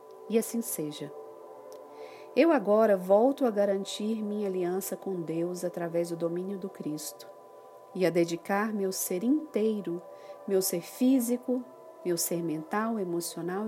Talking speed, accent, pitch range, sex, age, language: 130 wpm, Brazilian, 180-235 Hz, female, 40-59, Portuguese